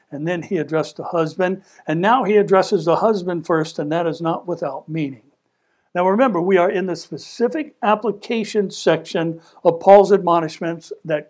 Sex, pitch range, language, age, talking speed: male, 170-230 Hz, English, 60-79, 170 wpm